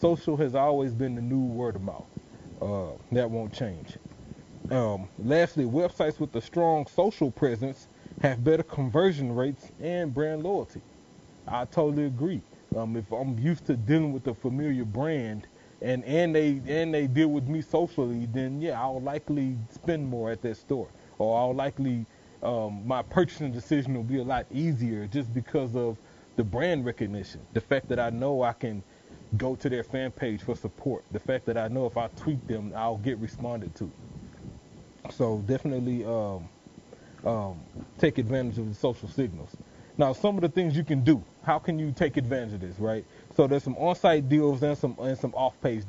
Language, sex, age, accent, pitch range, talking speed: English, male, 30-49, American, 115-155 Hz, 180 wpm